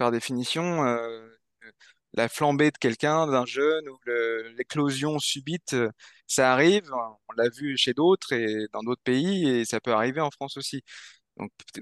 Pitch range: 120-160 Hz